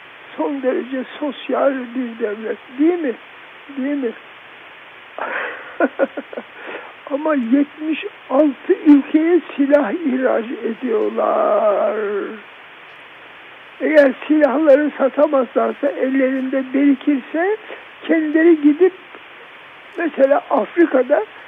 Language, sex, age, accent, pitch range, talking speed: Turkish, male, 60-79, native, 260-315 Hz, 65 wpm